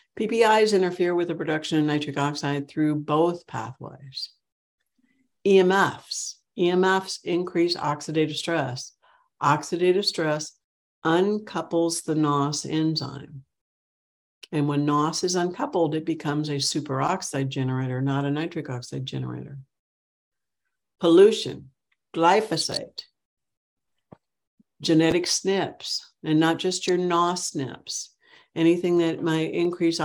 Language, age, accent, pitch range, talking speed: English, 60-79, American, 145-170 Hz, 100 wpm